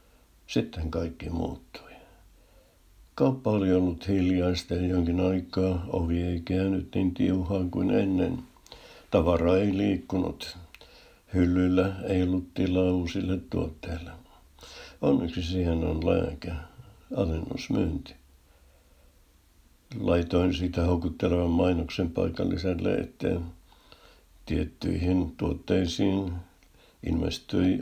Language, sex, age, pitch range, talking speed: Finnish, male, 60-79, 85-95 Hz, 85 wpm